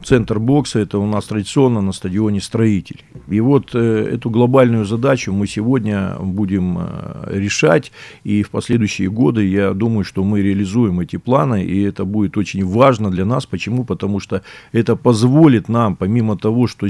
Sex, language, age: male, Russian, 50-69